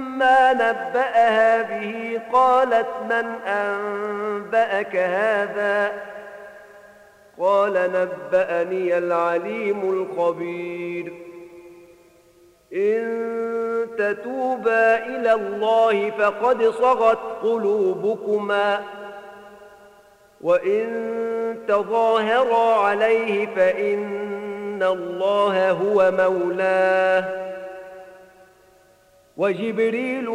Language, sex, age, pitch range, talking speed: Arabic, male, 50-69, 185-225 Hz, 50 wpm